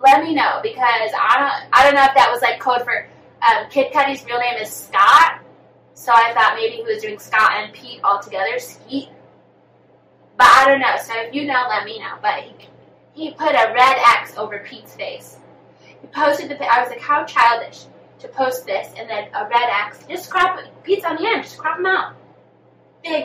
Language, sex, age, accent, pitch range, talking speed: English, female, 10-29, American, 220-315 Hz, 215 wpm